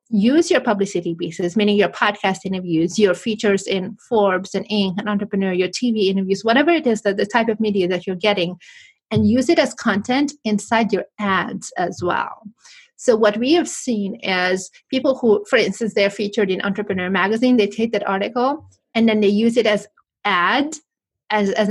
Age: 30-49